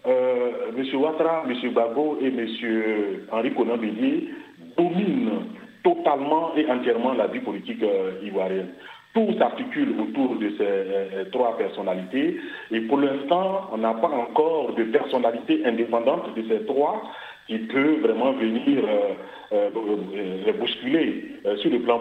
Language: French